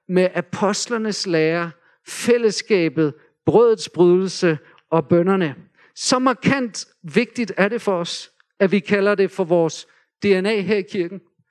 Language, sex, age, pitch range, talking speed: Danish, male, 50-69, 190-240 Hz, 130 wpm